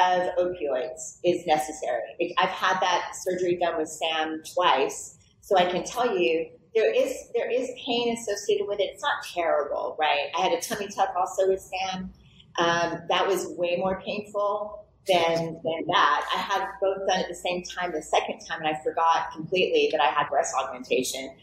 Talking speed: 185 wpm